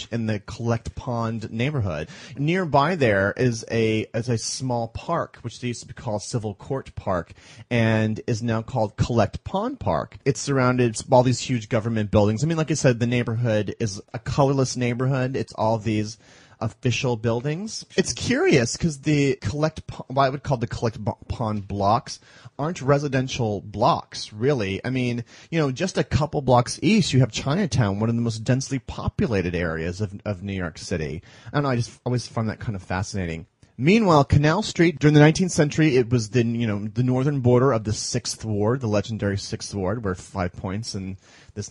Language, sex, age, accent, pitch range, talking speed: English, male, 30-49, American, 110-140 Hz, 185 wpm